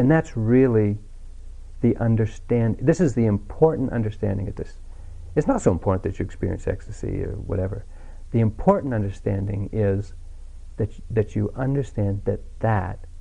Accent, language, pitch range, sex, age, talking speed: American, English, 75-125 Hz, male, 60-79, 145 wpm